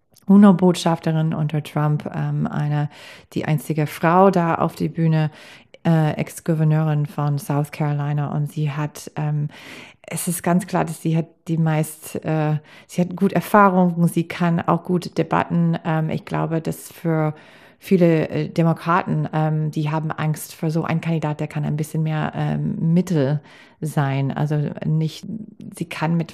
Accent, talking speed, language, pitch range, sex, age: German, 155 wpm, German, 155-180 Hz, female, 30-49